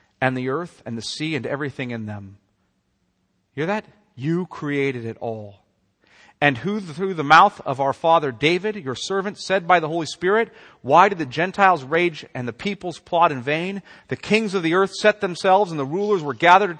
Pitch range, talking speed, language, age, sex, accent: 130-195 Hz, 195 wpm, English, 40-59, male, American